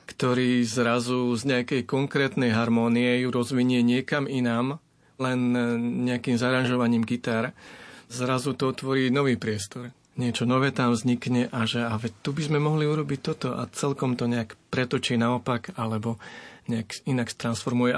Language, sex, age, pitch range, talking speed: Slovak, male, 30-49, 120-135 Hz, 135 wpm